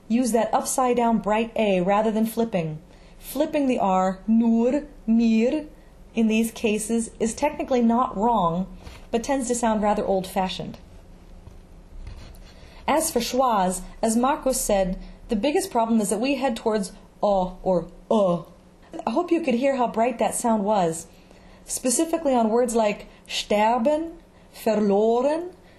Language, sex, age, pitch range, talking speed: English, female, 30-49, 200-250 Hz, 135 wpm